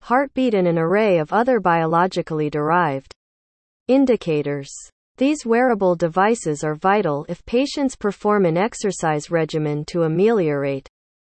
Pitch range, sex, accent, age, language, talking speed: 155-225 Hz, female, American, 40-59, English, 115 wpm